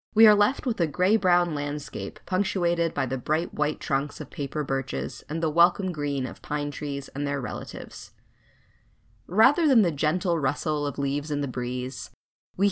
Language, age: English, 20-39